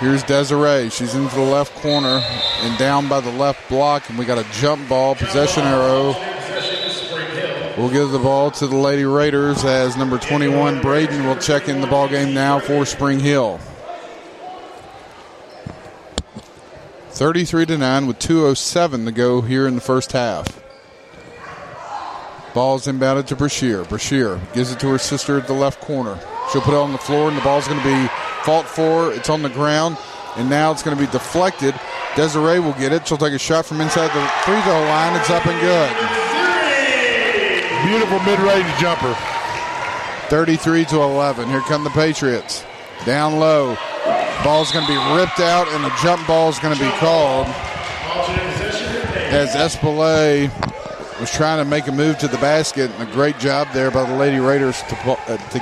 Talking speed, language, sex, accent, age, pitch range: 175 wpm, English, male, American, 40-59, 135-155 Hz